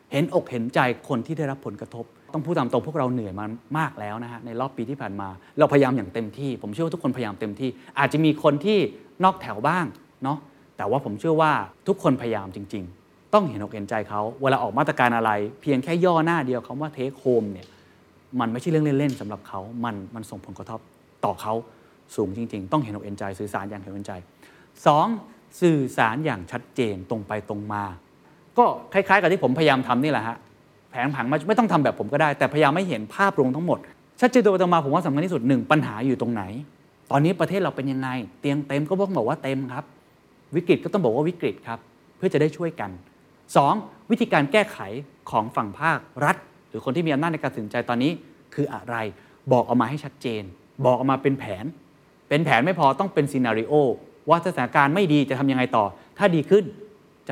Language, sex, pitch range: Thai, male, 110-155 Hz